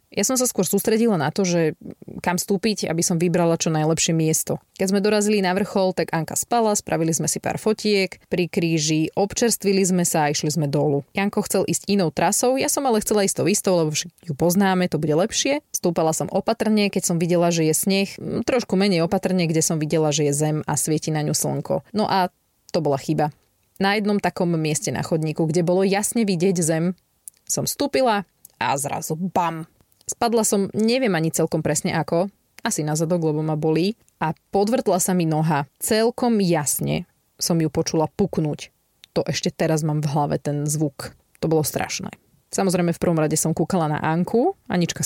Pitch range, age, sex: 155-200 Hz, 20-39, female